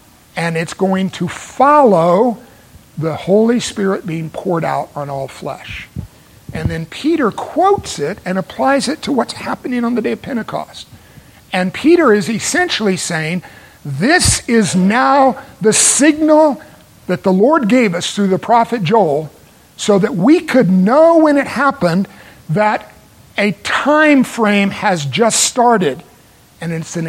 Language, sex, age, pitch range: English, male, 50-69, 160-210 Hz